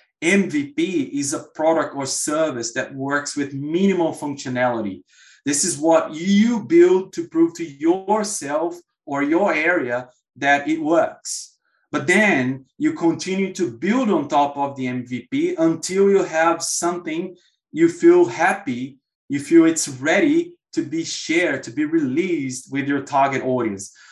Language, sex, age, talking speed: Portuguese, male, 20-39, 145 wpm